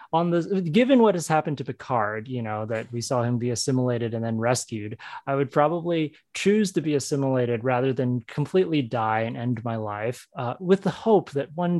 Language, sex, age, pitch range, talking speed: English, male, 20-39, 125-175 Hz, 205 wpm